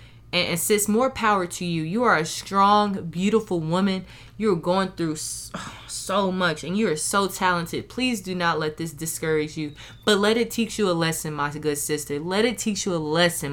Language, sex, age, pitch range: English, female, 20-39, 155-195 Hz